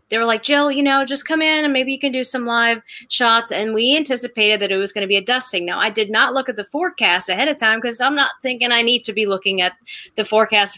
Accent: American